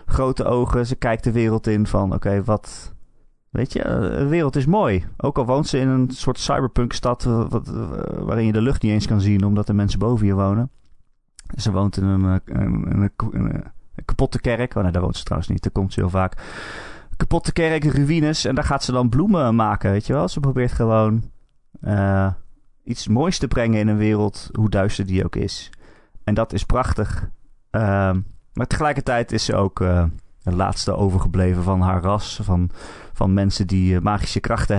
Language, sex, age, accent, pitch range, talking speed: Dutch, male, 30-49, Dutch, 95-120 Hz, 195 wpm